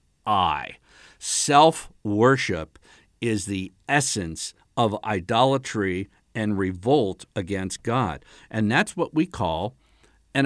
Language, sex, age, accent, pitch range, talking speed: English, male, 50-69, American, 105-155 Hz, 100 wpm